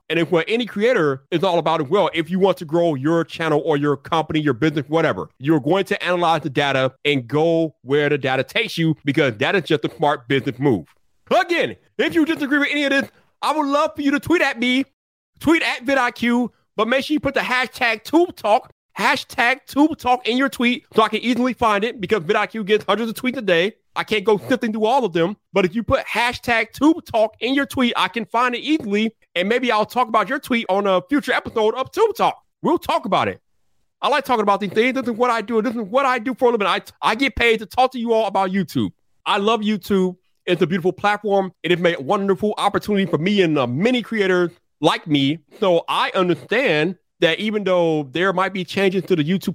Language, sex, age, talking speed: English, male, 30-49, 240 wpm